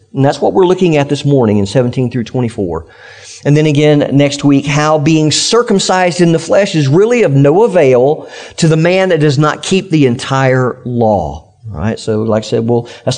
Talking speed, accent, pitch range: 210 wpm, American, 125-170 Hz